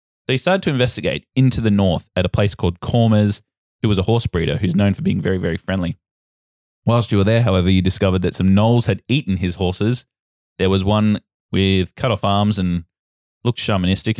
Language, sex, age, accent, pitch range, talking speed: English, male, 20-39, Australian, 85-105 Hz, 205 wpm